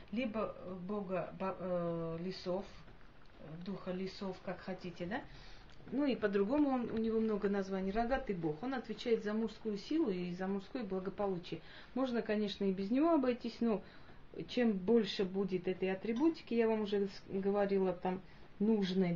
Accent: native